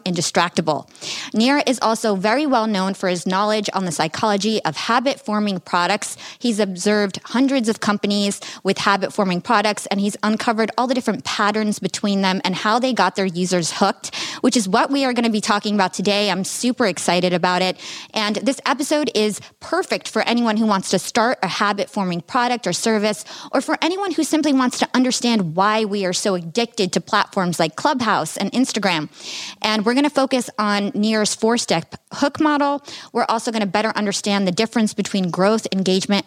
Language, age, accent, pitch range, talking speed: English, 20-39, American, 190-245 Hz, 190 wpm